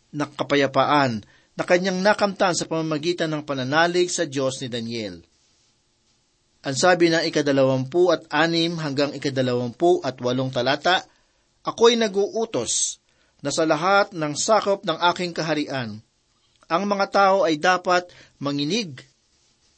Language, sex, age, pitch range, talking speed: Filipino, male, 50-69, 145-185 Hz, 120 wpm